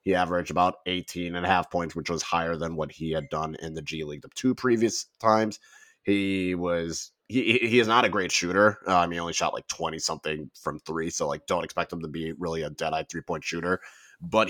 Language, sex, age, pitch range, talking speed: English, male, 30-49, 85-105 Hz, 245 wpm